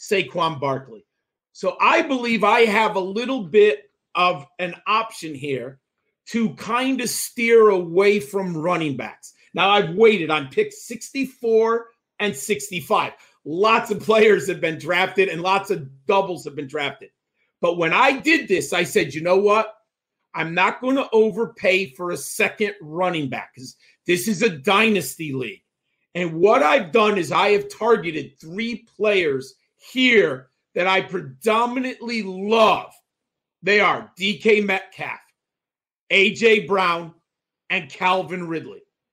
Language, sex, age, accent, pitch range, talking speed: English, male, 40-59, American, 180-235 Hz, 145 wpm